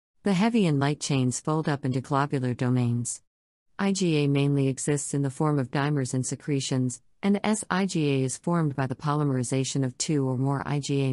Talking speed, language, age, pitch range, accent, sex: 175 wpm, English, 50-69, 130-150 Hz, American, female